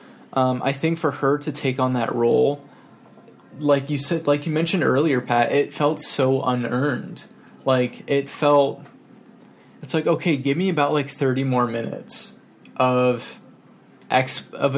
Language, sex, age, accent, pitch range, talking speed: English, male, 20-39, American, 120-140 Hz, 150 wpm